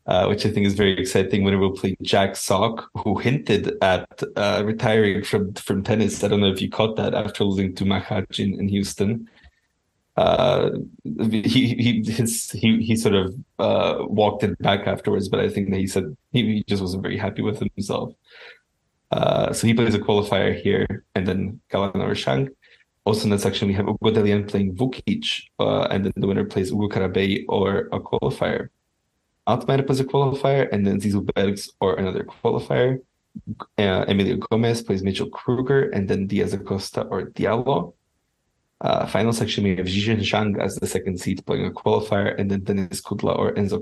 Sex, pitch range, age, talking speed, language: male, 100-115 Hz, 20-39, 180 wpm, English